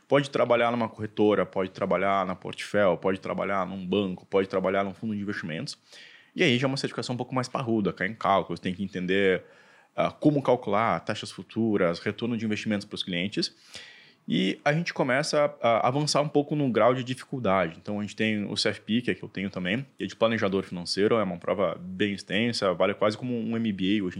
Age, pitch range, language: 20-39, 95-120 Hz, Portuguese